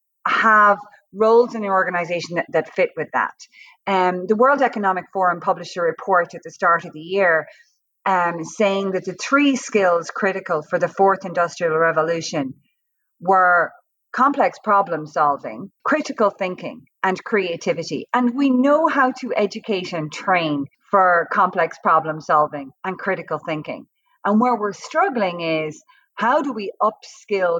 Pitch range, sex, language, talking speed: 165-220 Hz, female, English, 150 wpm